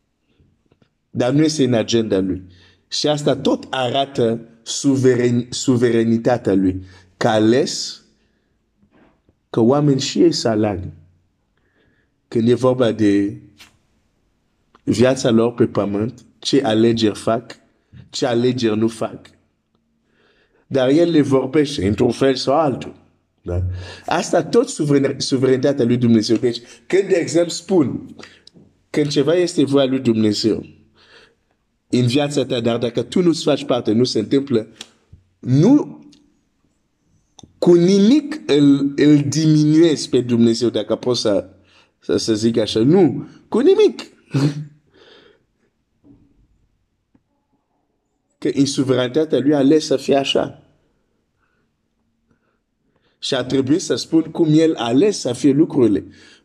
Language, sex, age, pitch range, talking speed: Romanian, male, 50-69, 115-150 Hz, 50 wpm